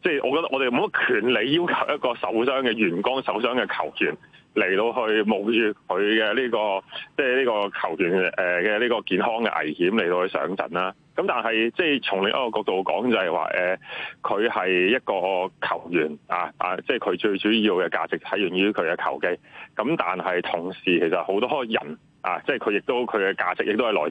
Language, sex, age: Chinese, male, 30-49